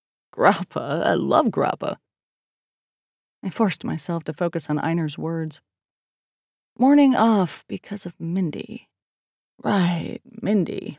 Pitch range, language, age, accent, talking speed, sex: 150-200 Hz, English, 30-49, American, 105 wpm, female